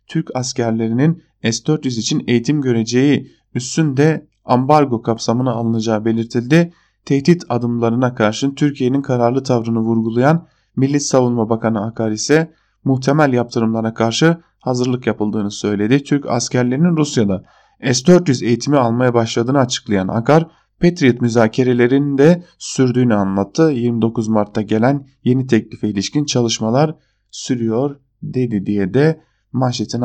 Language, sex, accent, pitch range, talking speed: German, male, Turkish, 115-140 Hz, 110 wpm